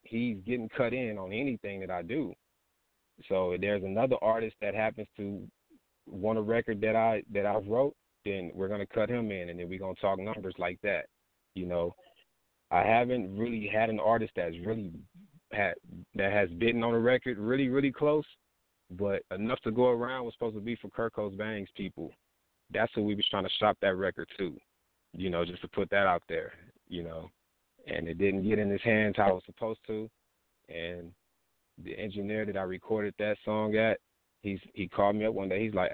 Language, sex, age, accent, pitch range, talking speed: English, male, 30-49, American, 95-110 Hz, 205 wpm